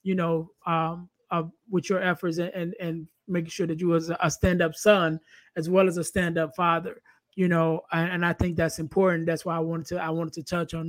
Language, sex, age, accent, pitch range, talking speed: English, male, 20-39, American, 165-195 Hz, 230 wpm